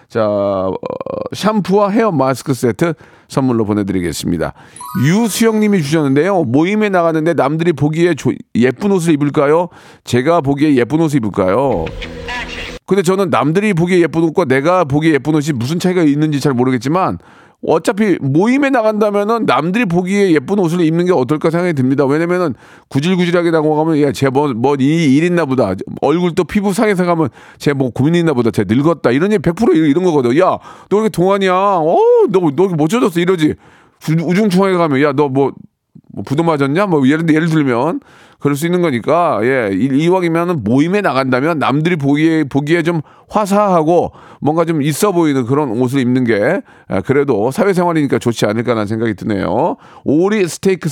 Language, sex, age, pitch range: Korean, male, 40-59, 135-185 Hz